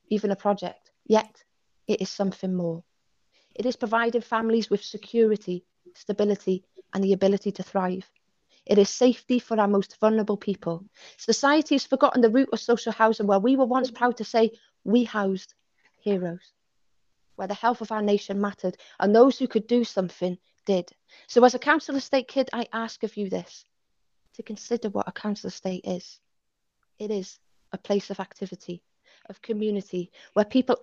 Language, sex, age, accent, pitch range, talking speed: English, female, 30-49, British, 195-230 Hz, 170 wpm